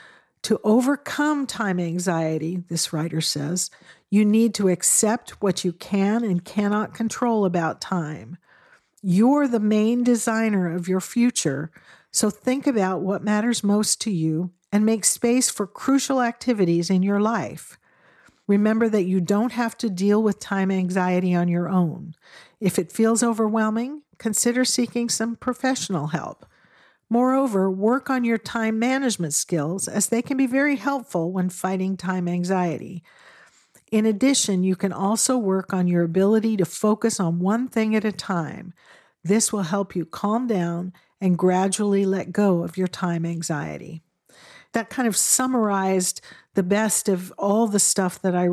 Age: 50-69